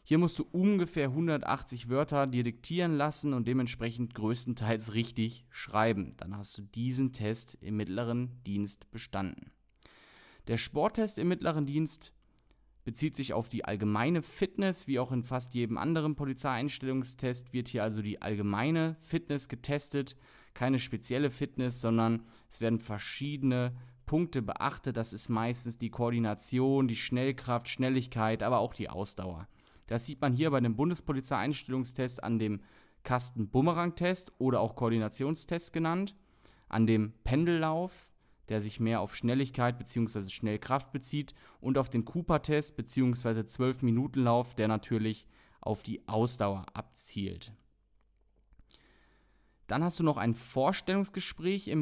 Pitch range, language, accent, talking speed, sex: 115-145 Hz, German, German, 130 wpm, male